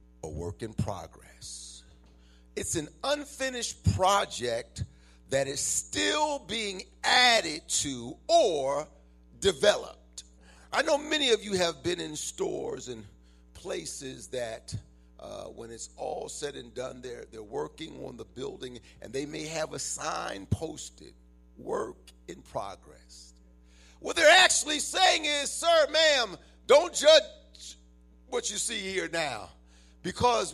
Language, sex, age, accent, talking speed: English, male, 50-69, American, 130 wpm